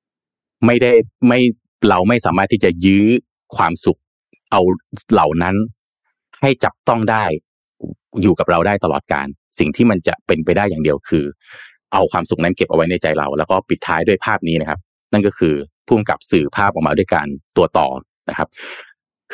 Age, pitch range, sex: 30-49, 80-110 Hz, male